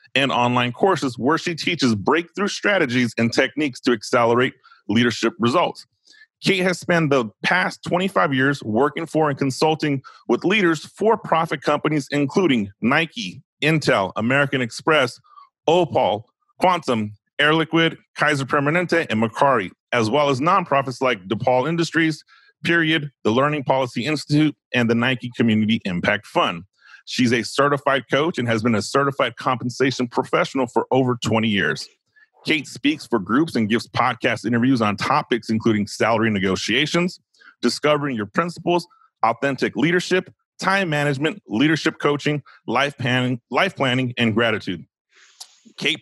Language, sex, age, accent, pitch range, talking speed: English, male, 30-49, American, 120-160 Hz, 135 wpm